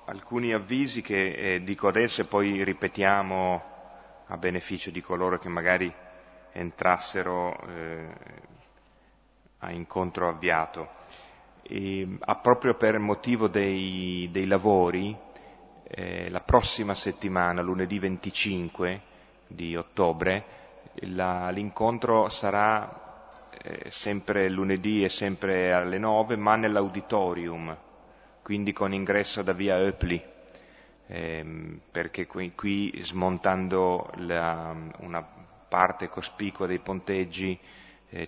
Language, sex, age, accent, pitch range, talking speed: Italian, male, 30-49, native, 85-100 Hz, 105 wpm